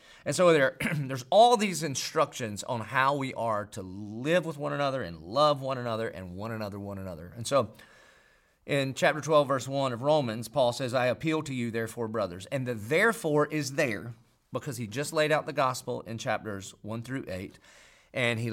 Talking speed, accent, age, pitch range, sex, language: 195 wpm, American, 40-59, 110-150 Hz, male, English